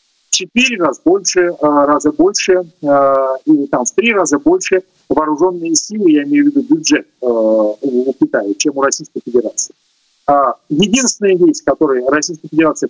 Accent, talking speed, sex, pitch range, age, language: native, 140 wpm, male, 145-245 Hz, 40-59, Ukrainian